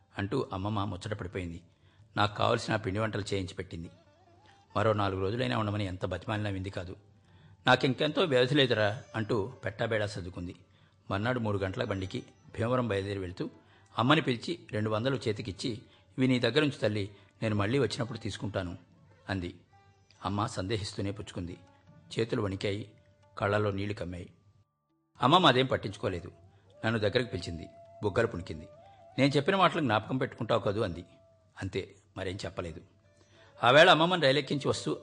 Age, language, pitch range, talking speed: 50-69, Telugu, 95-125 Hz, 125 wpm